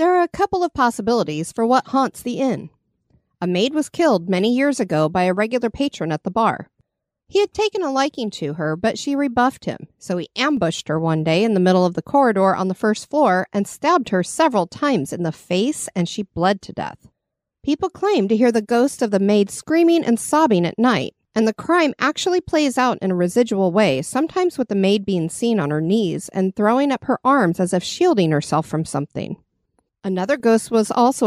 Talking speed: 215 wpm